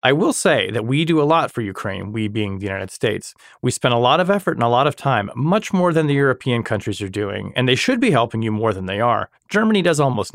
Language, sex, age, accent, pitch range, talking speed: English, male, 30-49, American, 110-145 Hz, 275 wpm